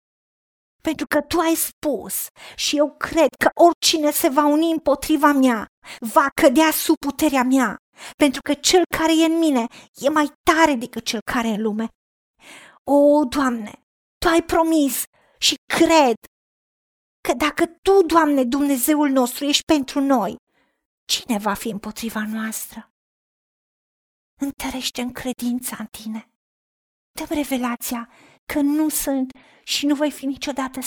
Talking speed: 140 wpm